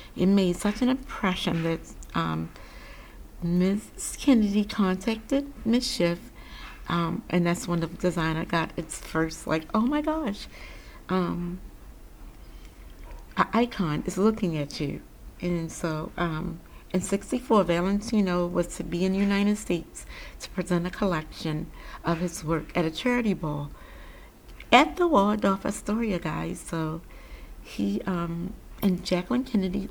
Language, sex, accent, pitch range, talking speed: English, female, American, 165-200 Hz, 135 wpm